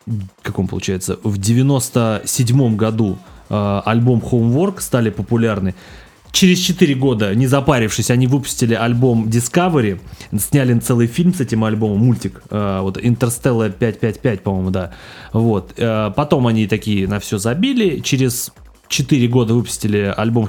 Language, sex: Russian, male